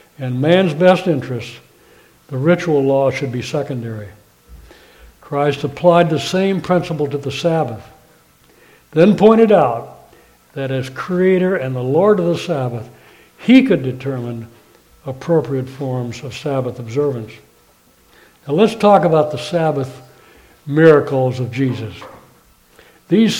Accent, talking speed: American, 125 wpm